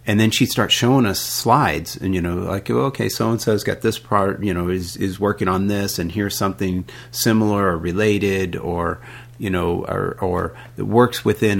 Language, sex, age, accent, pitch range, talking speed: English, male, 40-59, American, 95-120 Hz, 195 wpm